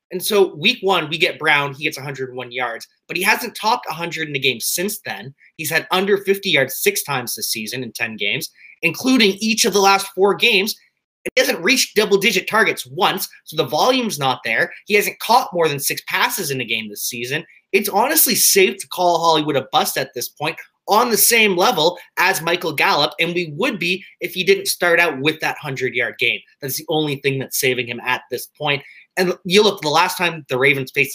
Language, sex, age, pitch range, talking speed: English, male, 20-39, 140-205 Hz, 220 wpm